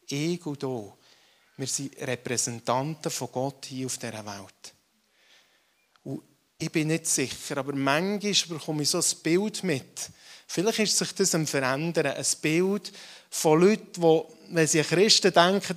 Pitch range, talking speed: 140-185 Hz, 145 wpm